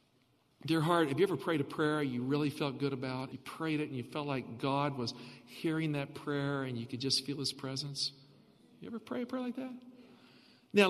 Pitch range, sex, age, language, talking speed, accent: 165-235 Hz, male, 50-69, English, 220 wpm, American